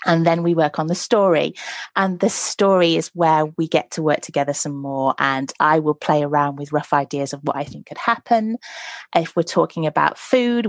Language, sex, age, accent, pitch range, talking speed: English, female, 30-49, British, 155-190 Hz, 215 wpm